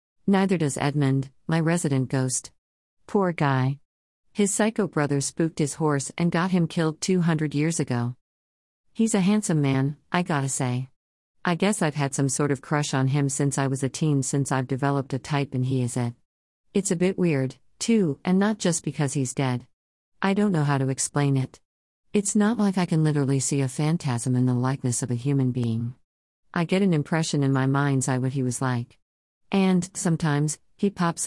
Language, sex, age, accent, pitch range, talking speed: English, female, 50-69, American, 130-165 Hz, 195 wpm